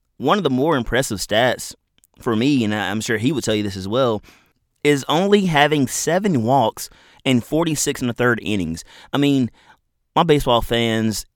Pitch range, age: 95-130 Hz, 30-49